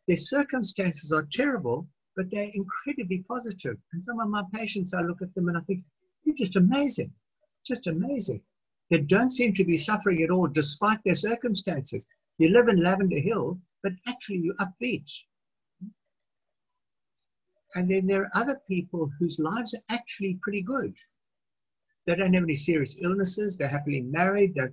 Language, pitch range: English, 160-210 Hz